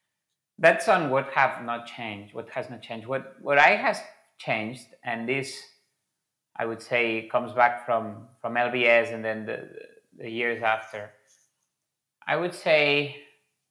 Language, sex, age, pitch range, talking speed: English, male, 30-49, 120-145 Hz, 150 wpm